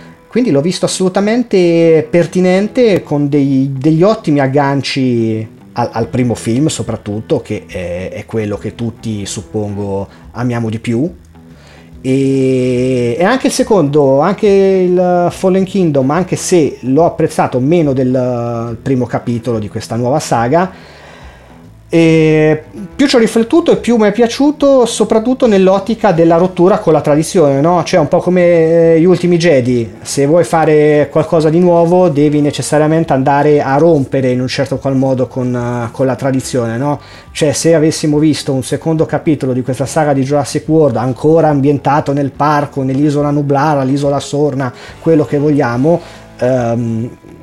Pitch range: 125-170 Hz